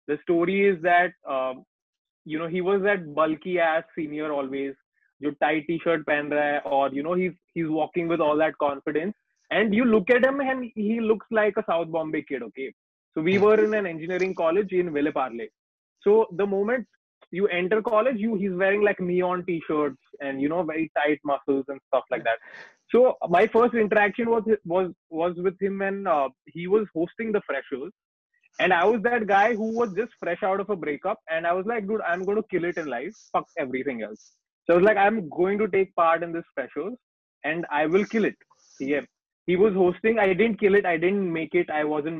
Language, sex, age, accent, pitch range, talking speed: Hindi, male, 20-39, native, 160-215 Hz, 215 wpm